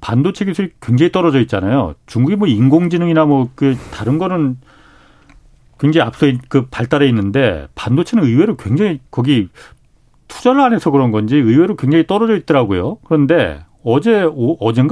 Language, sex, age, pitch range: Korean, male, 40-59, 120-170 Hz